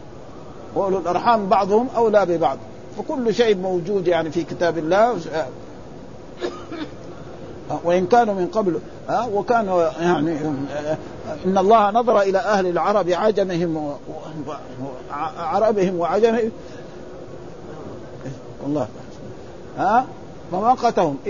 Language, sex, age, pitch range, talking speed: Arabic, male, 50-69, 170-225 Hz, 85 wpm